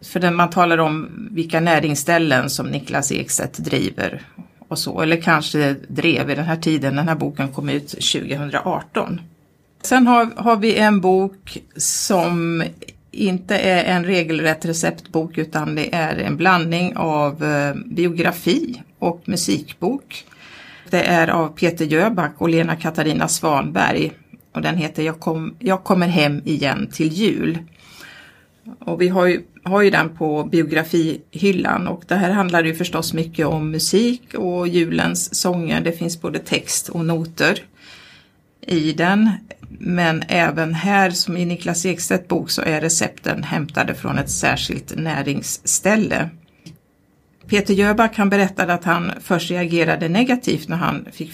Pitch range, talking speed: 160-190 Hz, 145 wpm